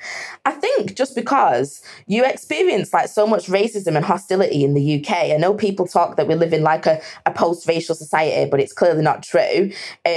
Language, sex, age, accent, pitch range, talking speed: English, female, 20-39, British, 165-200 Hz, 200 wpm